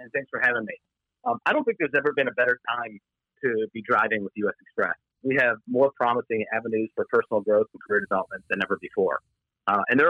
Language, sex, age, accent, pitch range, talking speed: English, male, 40-59, American, 115-175 Hz, 225 wpm